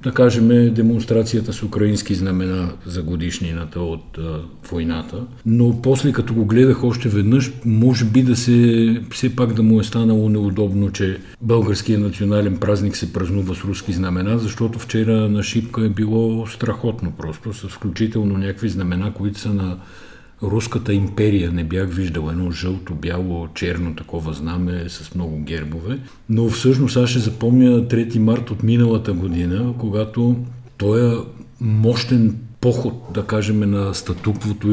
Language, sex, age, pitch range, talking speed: Bulgarian, male, 50-69, 90-115 Hz, 140 wpm